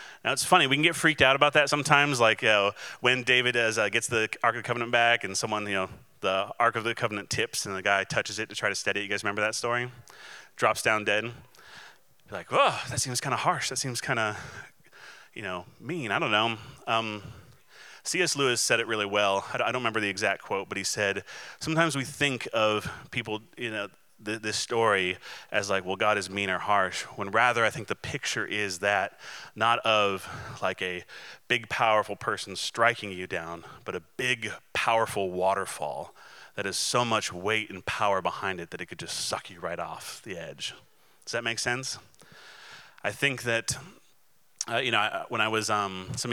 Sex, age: male, 30-49